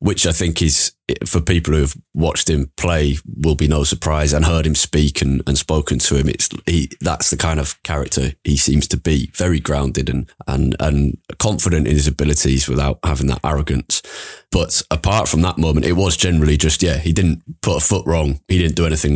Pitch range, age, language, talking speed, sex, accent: 70-80 Hz, 20-39, English, 210 wpm, male, British